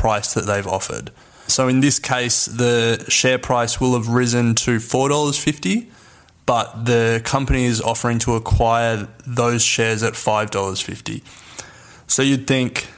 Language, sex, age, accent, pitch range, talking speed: English, male, 20-39, Australian, 115-130 Hz, 140 wpm